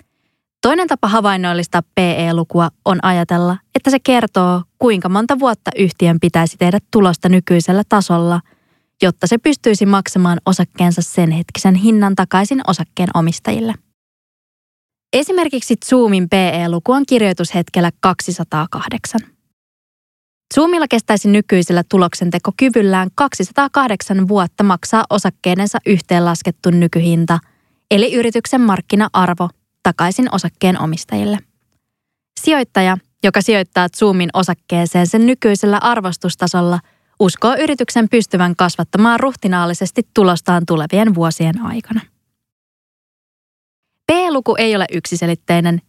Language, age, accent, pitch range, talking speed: Finnish, 20-39, native, 175-225 Hz, 95 wpm